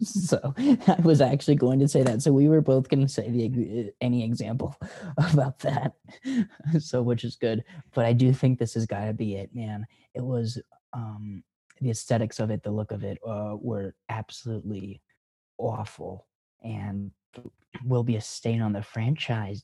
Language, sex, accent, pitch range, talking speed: English, male, American, 110-130 Hz, 175 wpm